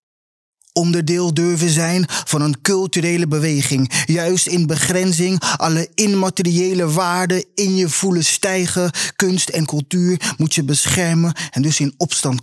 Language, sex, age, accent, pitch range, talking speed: Dutch, male, 20-39, Dutch, 145-170 Hz, 130 wpm